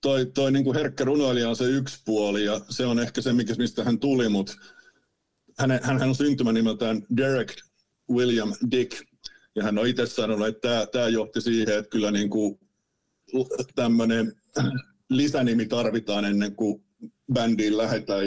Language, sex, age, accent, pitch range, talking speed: Finnish, male, 50-69, native, 105-125 Hz, 155 wpm